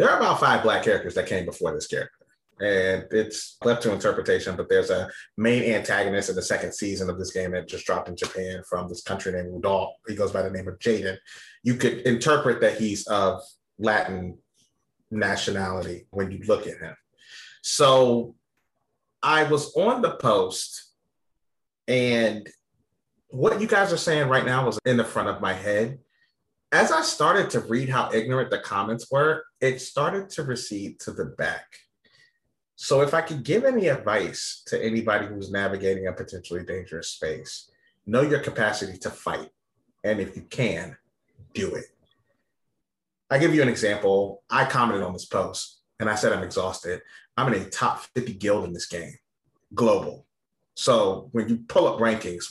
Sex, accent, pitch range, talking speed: male, American, 95-135 Hz, 175 wpm